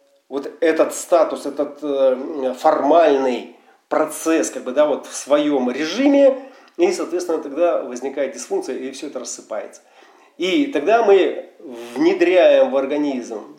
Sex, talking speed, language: male, 105 wpm, Russian